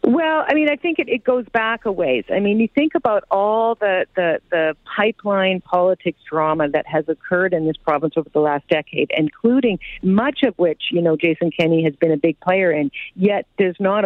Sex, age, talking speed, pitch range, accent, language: female, 50-69, 215 wpm, 155-185 Hz, American, English